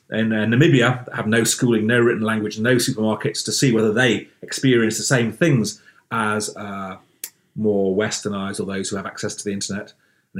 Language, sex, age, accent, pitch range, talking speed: English, male, 30-49, British, 100-115 Hz, 190 wpm